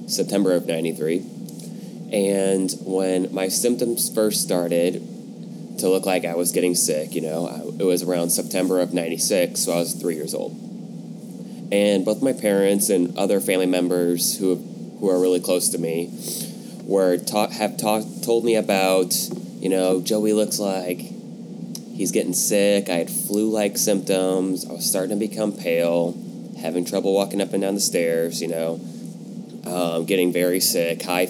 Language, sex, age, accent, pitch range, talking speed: English, male, 20-39, American, 85-100 Hz, 165 wpm